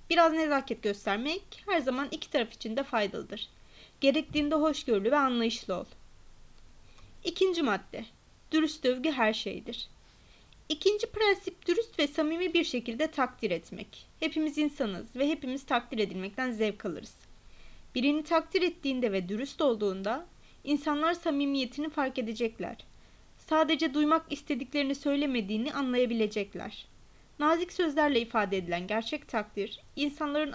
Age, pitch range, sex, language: 30-49, 225-315 Hz, female, Turkish